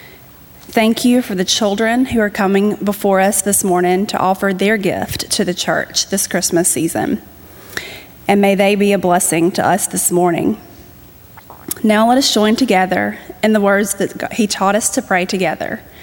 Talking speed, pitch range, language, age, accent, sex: 175 wpm, 180-210 Hz, English, 30-49, American, female